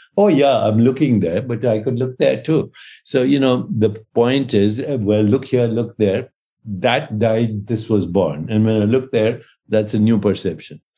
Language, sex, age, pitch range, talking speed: English, male, 60-79, 95-115 Hz, 195 wpm